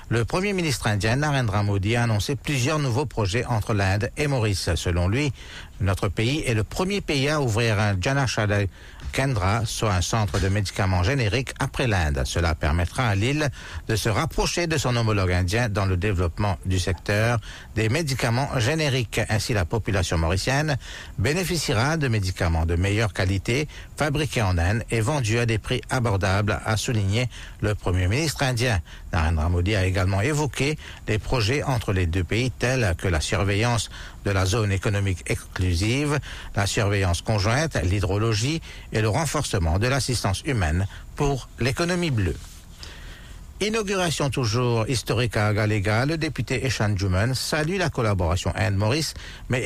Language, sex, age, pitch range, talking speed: English, male, 60-79, 95-130 Hz, 155 wpm